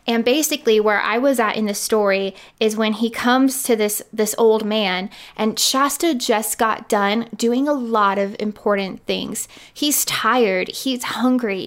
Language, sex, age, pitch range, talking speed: English, female, 20-39, 215-260 Hz, 170 wpm